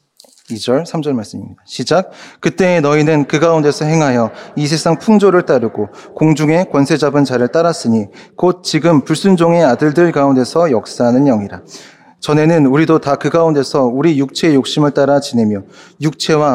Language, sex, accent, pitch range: Korean, male, native, 125-175 Hz